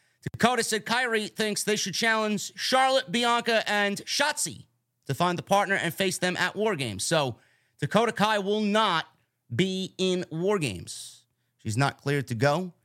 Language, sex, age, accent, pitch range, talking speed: English, male, 30-49, American, 130-190 Hz, 165 wpm